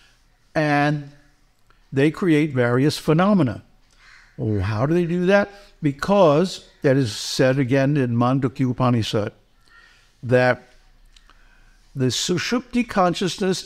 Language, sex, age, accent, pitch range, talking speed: English, male, 60-79, American, 130-180 Hz, 95 wpm